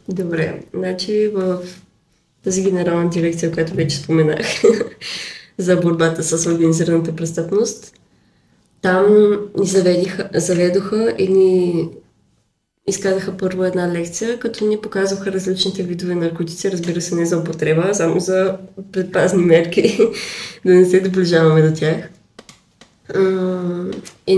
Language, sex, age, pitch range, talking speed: Bulgarian, female, 20-39, 170-195 Hz, 115 wpm